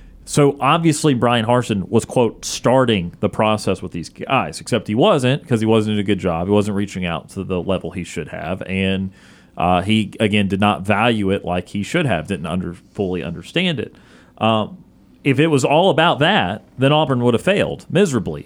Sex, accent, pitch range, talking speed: male, American, 100-125 Hz, 200 wpm